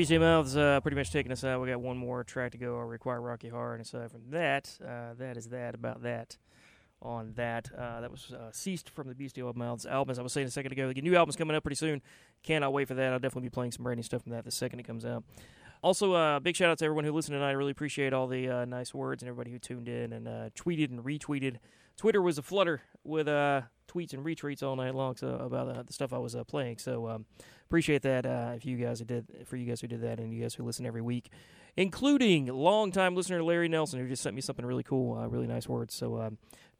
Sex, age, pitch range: male, 30-49, 120-140 Hz